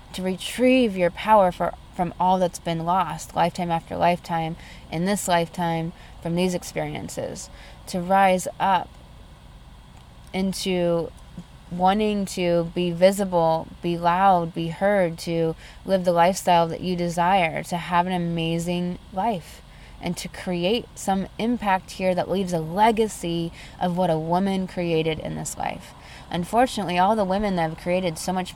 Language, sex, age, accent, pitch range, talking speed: English, female, 20-39, American, 170-205 Hz, 145 wpm